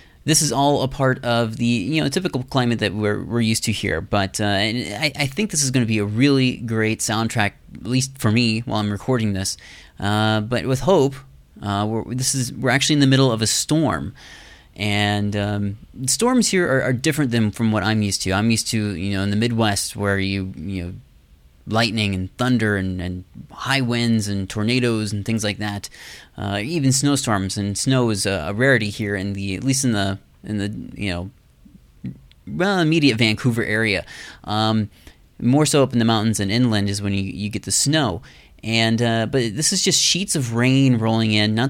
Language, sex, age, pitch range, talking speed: English, male, 30-49, 105-140 Hz, 210 wpm